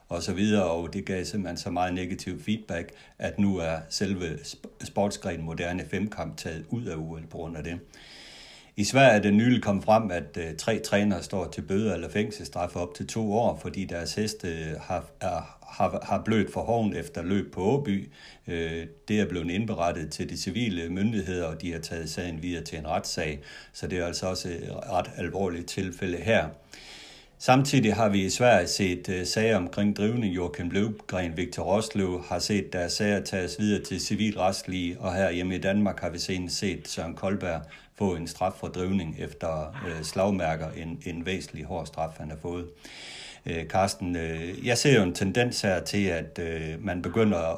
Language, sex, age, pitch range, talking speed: Danish, male, 60-79, 85-100 Hz, 185 wpm